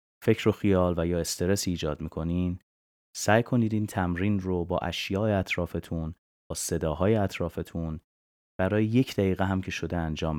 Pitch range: 80-95 Hz